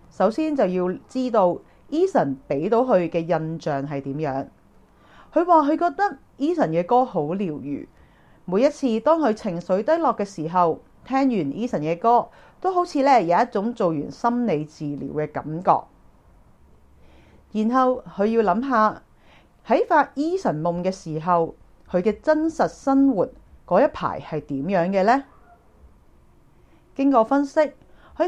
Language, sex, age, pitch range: Chinese, female, 40-59, 155-255 Hz